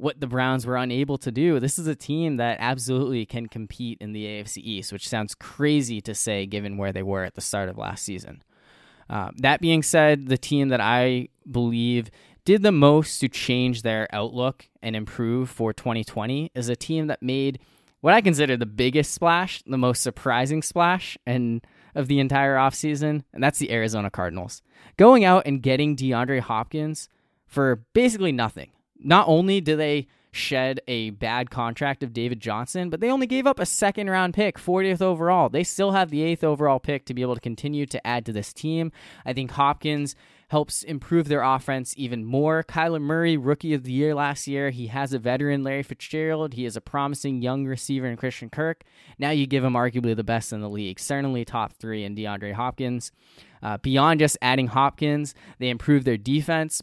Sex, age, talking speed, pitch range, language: male, 20-39, 190 wpm, 120-150 Hz, English